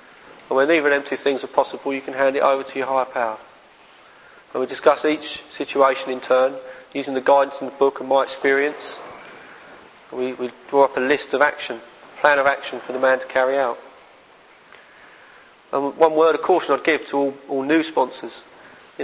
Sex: male